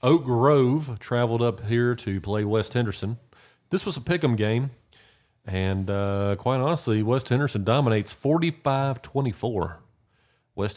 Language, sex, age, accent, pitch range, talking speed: English, male, 40-59, American, 110-145 Hz, 130 wpm